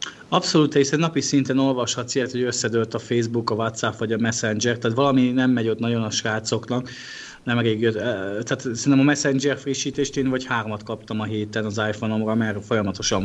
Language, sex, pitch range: Hungarian, male, 105-120 Hz